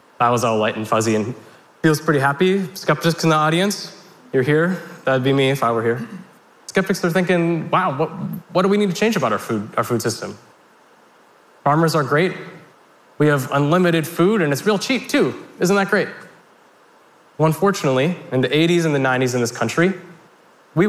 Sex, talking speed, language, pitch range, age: male, 190 wpm, Russian, 135-180 Hz, 20-39